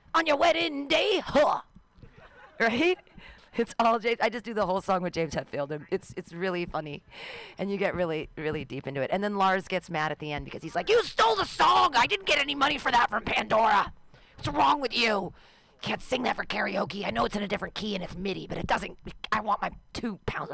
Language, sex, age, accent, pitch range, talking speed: English, female, 40-59, American, 170-225 Hz, 235 wpm